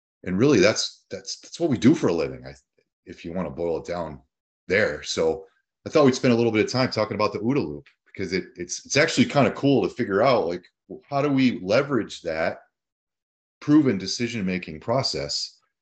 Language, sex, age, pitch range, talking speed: English, male, 30-49, 80-115 Hz, 215 wpm